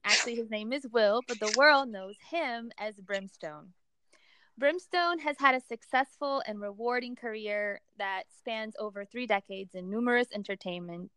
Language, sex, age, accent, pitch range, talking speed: English, female, 20-39, American, 200-255 Hz, 150 wpm